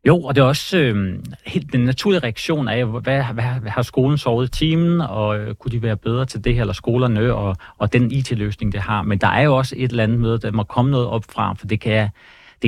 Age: 40-59